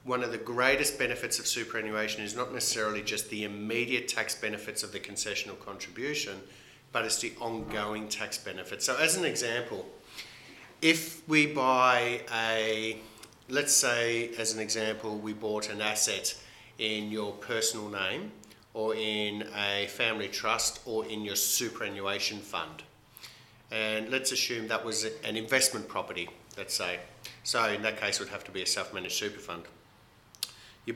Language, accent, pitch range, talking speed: English, Australian, 100-115 Hz, 155 wpm